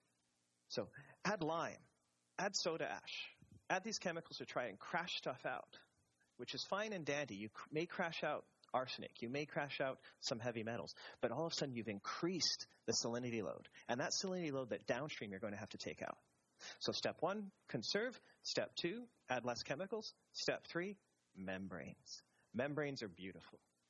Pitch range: 105-145 Hz